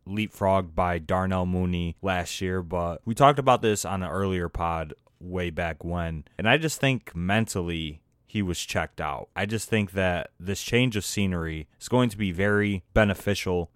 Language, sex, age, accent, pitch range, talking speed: English, male, 20-39, American, 90-100 Hz, 180 wpm